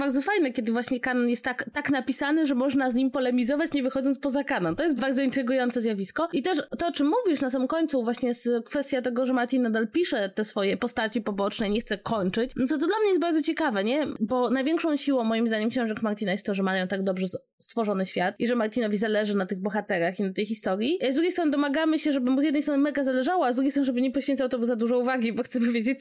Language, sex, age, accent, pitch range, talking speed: Polish, female, 20-39, native, 210-270 Hz, 250 wpm